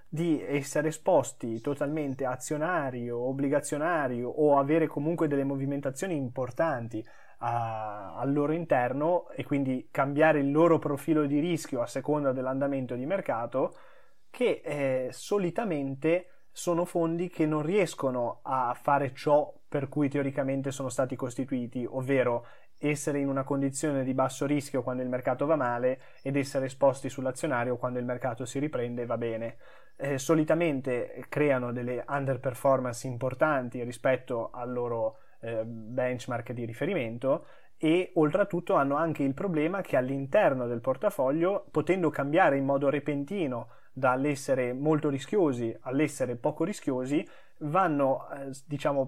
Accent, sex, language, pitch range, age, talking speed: native, male, Italian, 125-150 Hz, 20-39, 130 wpm